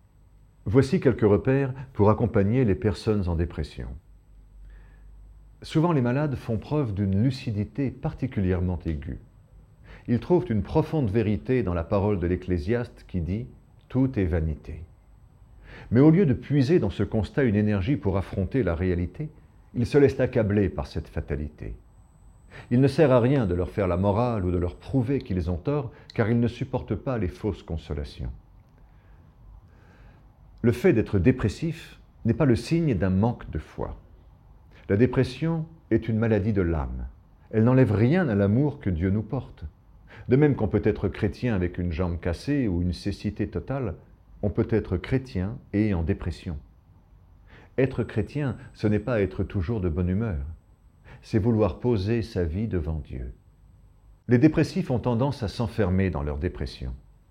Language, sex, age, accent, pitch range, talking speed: French, male, 50-69, French, 90-125 Hz, 160 wpm